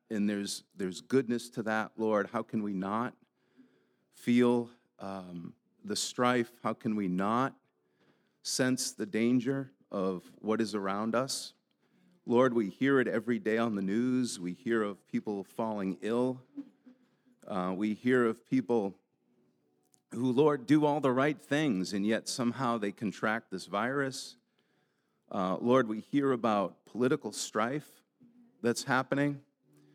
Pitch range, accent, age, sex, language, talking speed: 105-135 Hz, American, 40-59, male, English, 140 wpm